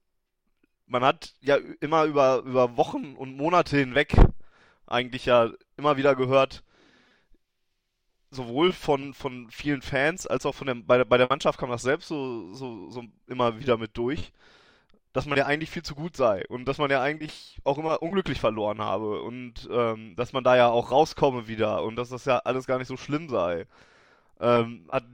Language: German